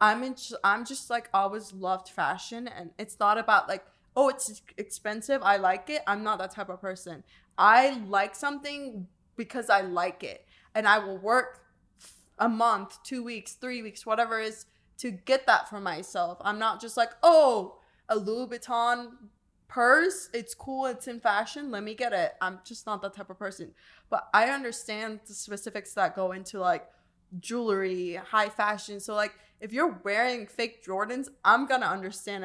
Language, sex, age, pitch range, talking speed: English, female, 20-39, 195-235 Hz, 180 wpm